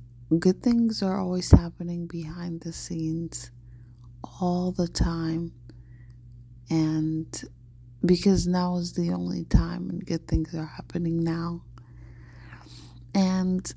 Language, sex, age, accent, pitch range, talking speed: English, female, 30-49, American, 120-180 Hz, 110 wpm